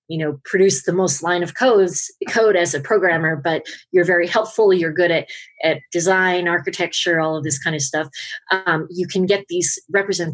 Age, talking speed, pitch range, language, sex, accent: 30-49, 195 wpm, 145-175 Hz, English, female, American